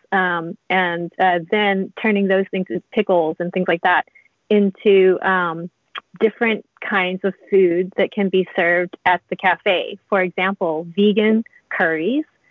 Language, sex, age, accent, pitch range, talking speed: English, female, 30-49, American, 185-210 Hz, 145 wpm